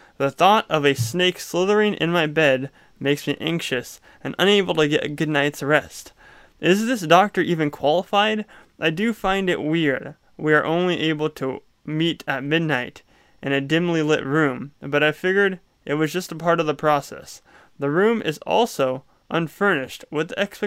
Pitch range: 140-185 Hz